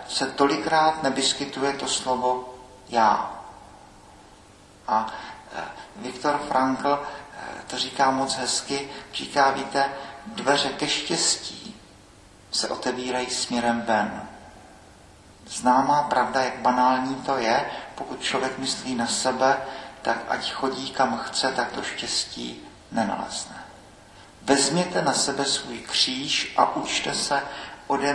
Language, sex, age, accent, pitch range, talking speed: Czech, male, 50-69, native, 125-150 Hz, 110 wpm